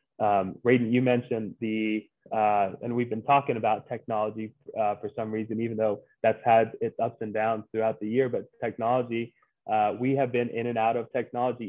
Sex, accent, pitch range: male, American, 110-130 Hz